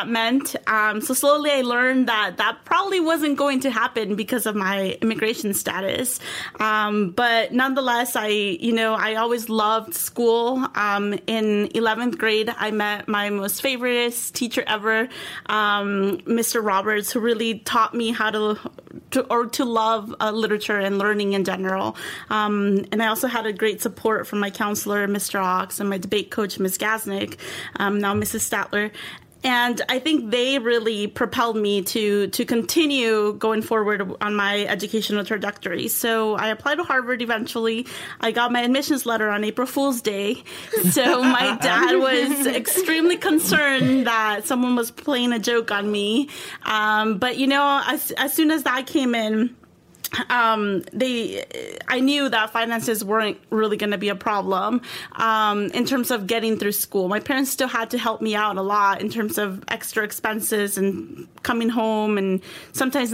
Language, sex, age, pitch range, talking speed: English, female, 20-39, 210-250 Hz, 165 wpm